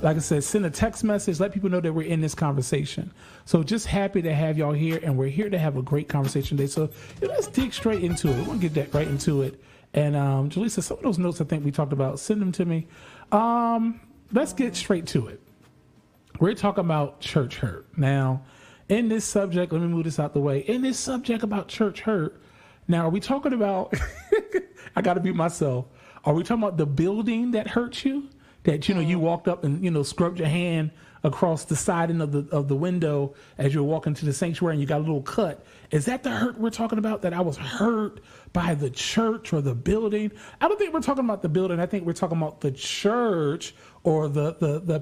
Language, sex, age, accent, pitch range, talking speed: English, male, 40-59, American, 145-205 Hz, 235 wpm